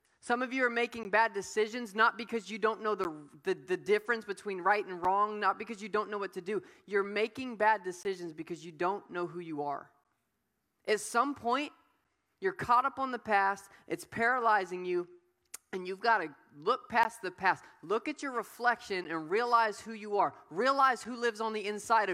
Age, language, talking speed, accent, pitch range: 20-39, English, 200 wpm, American, 170-225 Hz